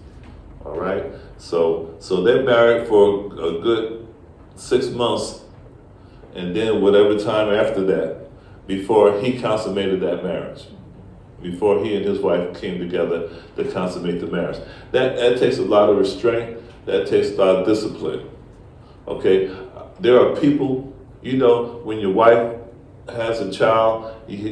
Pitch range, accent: 105-150 Hz, American